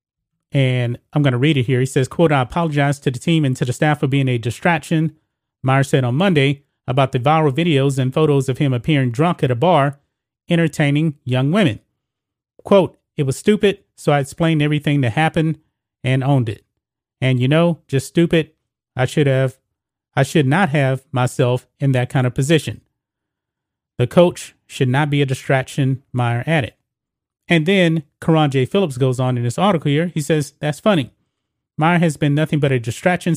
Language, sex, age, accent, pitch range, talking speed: English, male, 30-49, American, 130-160 Hz, 190 wpm